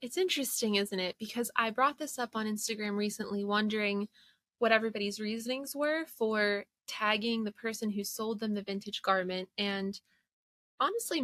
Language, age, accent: English, 20-39, American